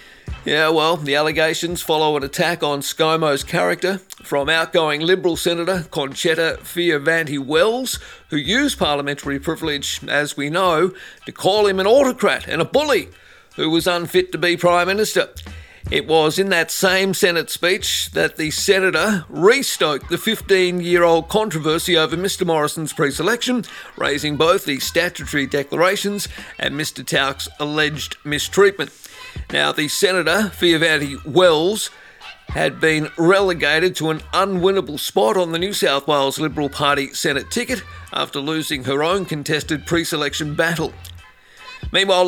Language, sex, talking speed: English, male, 135 wpm